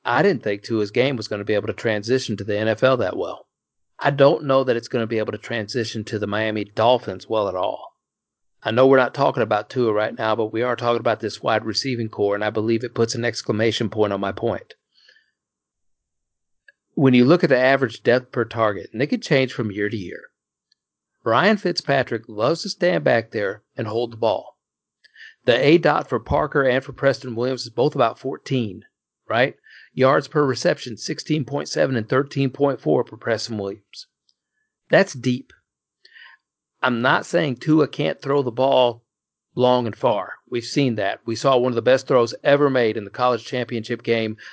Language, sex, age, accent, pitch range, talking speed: English, male, 50-69, American, 110-135 Hz, 195 wpm